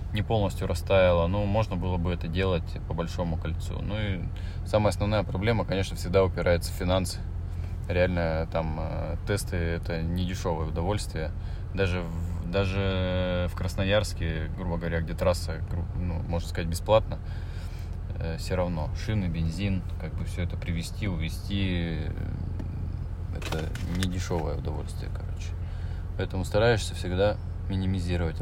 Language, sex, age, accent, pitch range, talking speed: Russian, male, 20-39, native, 85-95 Hz, 130 wpm